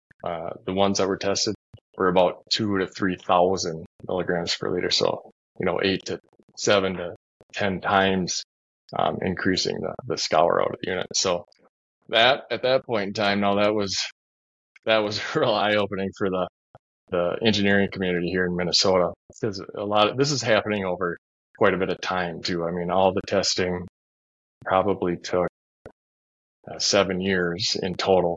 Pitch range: 85-100 Hz